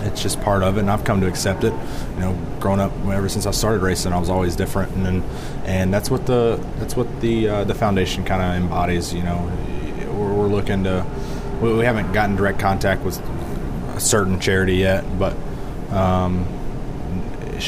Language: English